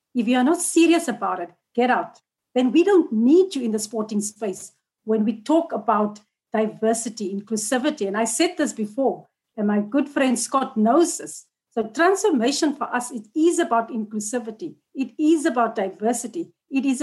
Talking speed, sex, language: 175 wpm, female, English